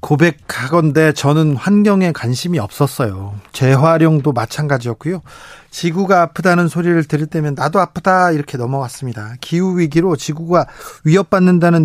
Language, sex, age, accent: Korean, male, 40-59, native